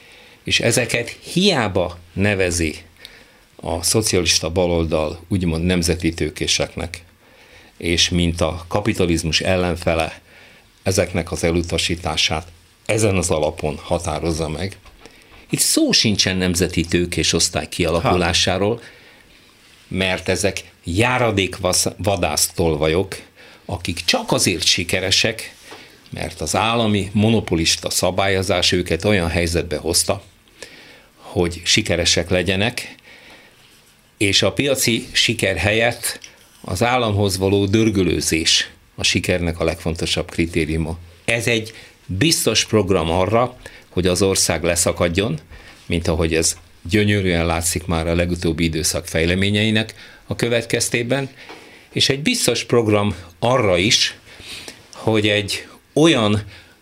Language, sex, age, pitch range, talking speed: Hungarian, male, 50-69, 85-105 Hz, 100 wpm